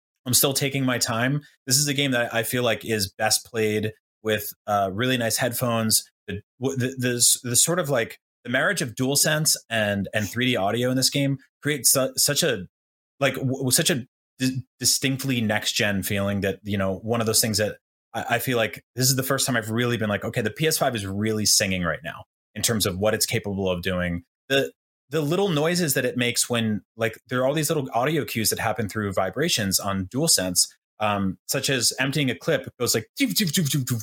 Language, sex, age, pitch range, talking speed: English, male, 30-49, 110-145 Hz, 220 wpm